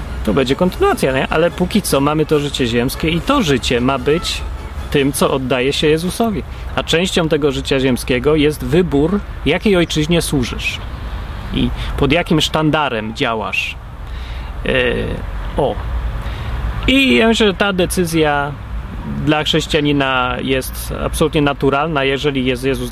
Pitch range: 125-180 Hz